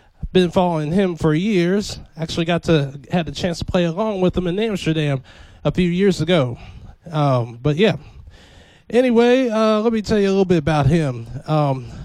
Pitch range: 135-165 Hz